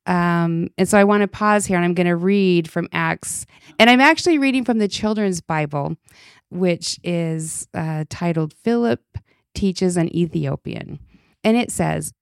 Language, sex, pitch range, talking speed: English, female, 170-210 Hz, 165 wpm